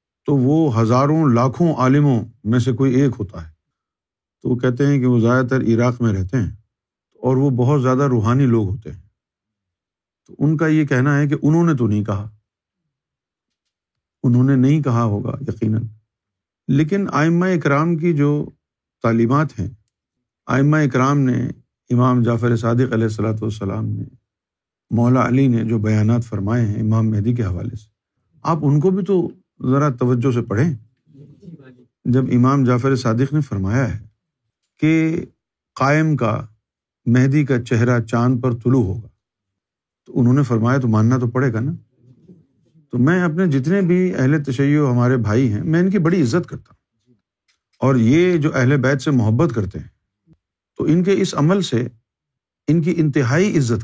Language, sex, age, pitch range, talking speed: Urdu, male, 50-69, 110-145 Hz, 165 wpm